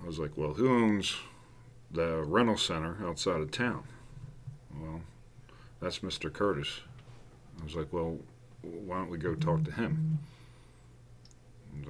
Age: 40-59